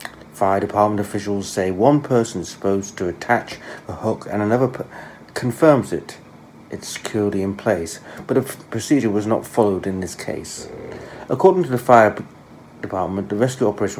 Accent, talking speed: British, 165 wpm